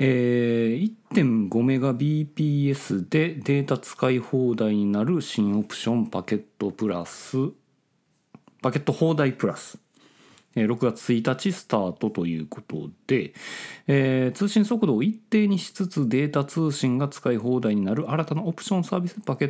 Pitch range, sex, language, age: 110-185 Hz, male, Japanese, 40-59